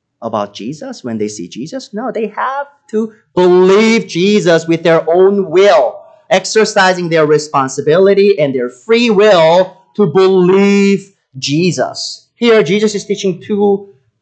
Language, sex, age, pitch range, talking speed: English, male, 30-49, 130-205 Hz, 130 wpm